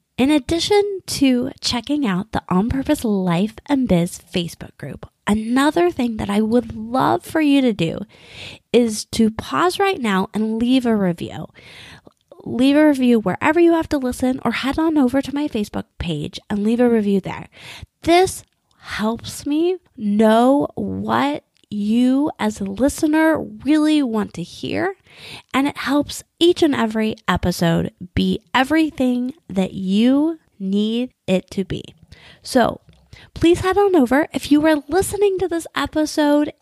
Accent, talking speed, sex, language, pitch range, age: American, 150 wpm, female, English, 210-300 Hz, 20-39